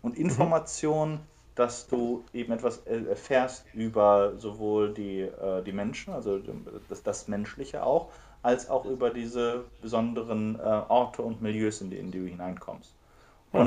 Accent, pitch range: German, 110-130 Hz